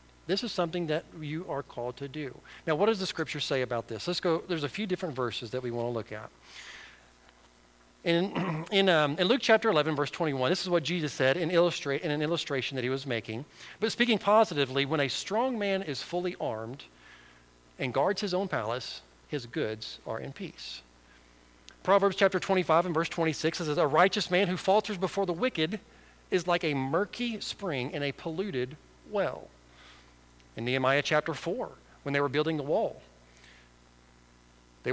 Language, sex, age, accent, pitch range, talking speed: English, male, 40-59, American, 115-180 Hz, 185 wpm